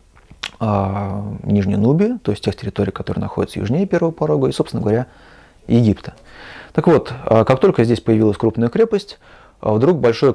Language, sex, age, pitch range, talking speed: Russian, male, 30-49, 105-130 Hz, 145 wpm